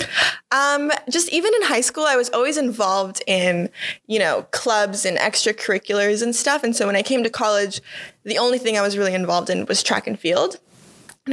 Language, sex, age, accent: English, female, 20-39, American